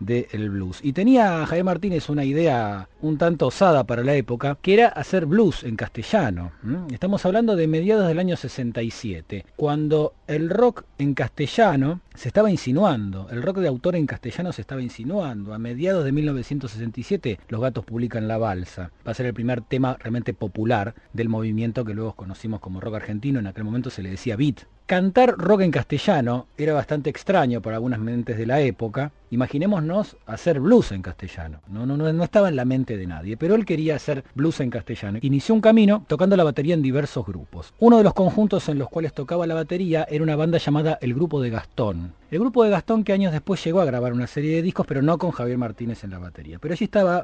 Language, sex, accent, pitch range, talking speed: Spanish, male, Argentinian, 115-165 Hz, 205 wpm